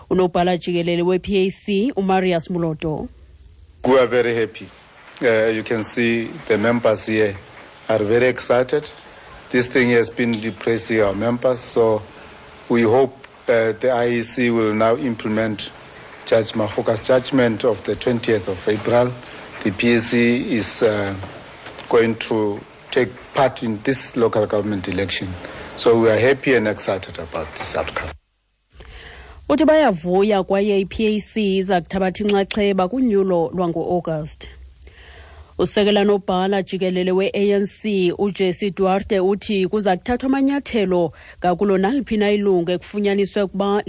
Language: English